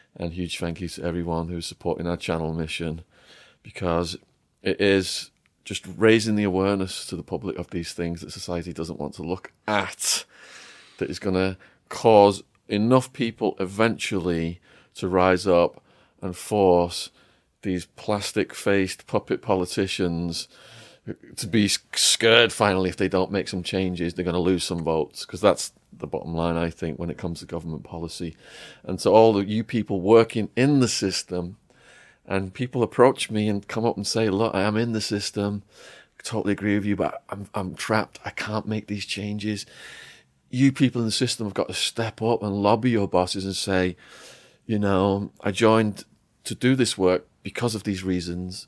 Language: English